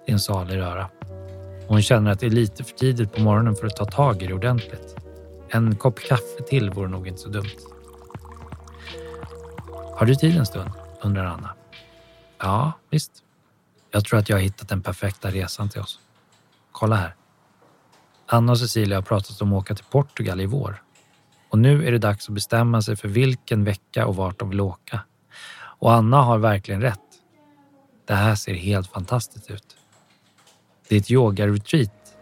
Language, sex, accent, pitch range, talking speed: Swedish, male, native, 100-125 Hz, 175 wpm